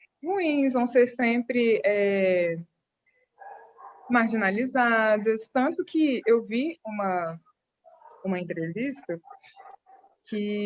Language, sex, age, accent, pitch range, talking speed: Portuguese, female, 20-39, Brazilian, 195-245 Hz, 80 wpm